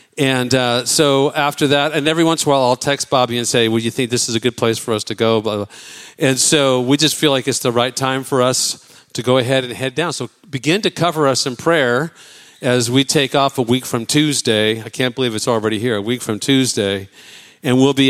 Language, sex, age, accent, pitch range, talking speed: English, male, 50-69, American, 110-135 Hz, 245 wpm